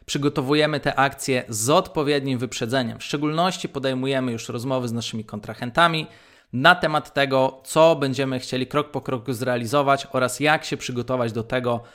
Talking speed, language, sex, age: 150 wpm, Polish, male, 20-39